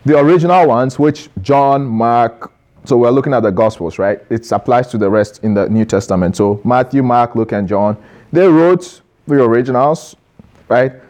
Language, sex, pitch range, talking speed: English, male, 120-160 Hz, 180 wpm